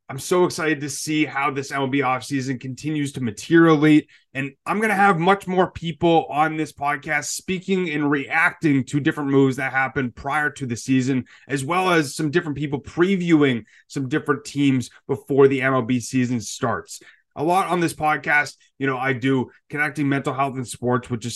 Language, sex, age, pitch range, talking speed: English, male, 30-49, 125-155 Hz, 185 wpm